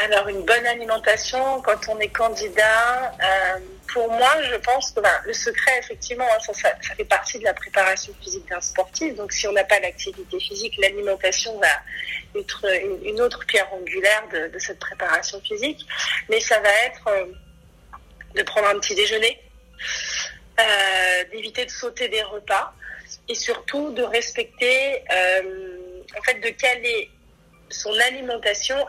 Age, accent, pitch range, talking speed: 30-49, French, 195-255 Hz, 155 wpm